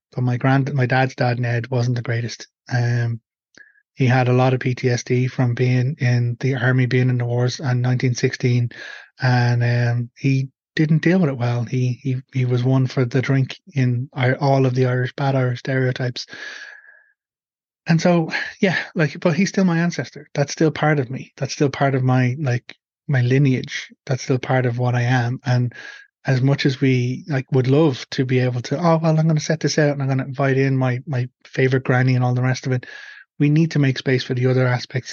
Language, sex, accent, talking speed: English, male, Irish, 215 wpm